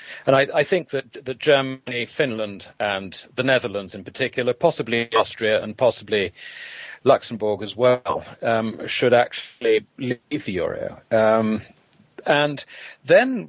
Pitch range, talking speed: 115-160 Hz, 130 wpm